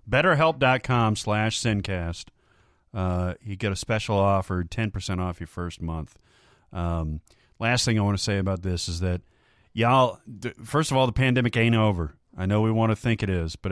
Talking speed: 185 wpm